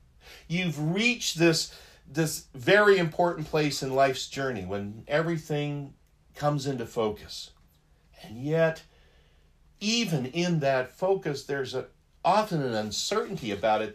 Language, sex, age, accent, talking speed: English, male, 60-79, American, 115 wpm